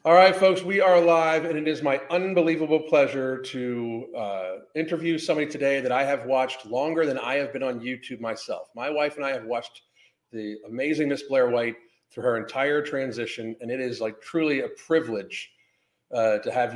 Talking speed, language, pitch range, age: 195 wpm, English, 120-160 Hz, 40-59